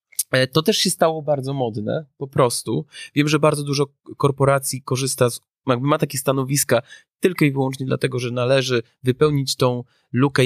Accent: native